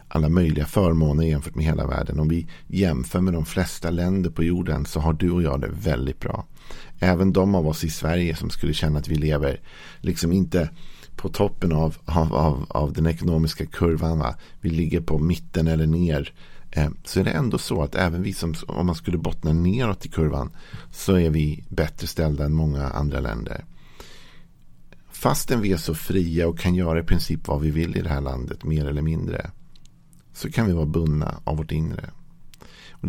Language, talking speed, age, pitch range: Swedish, 195 wpm, 50-69, 75-85 Hz